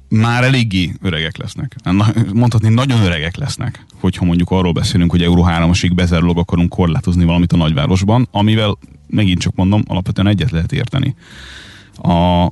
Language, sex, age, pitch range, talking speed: Hungarian, male, 30-49, 85-110 Hz, 150 wpm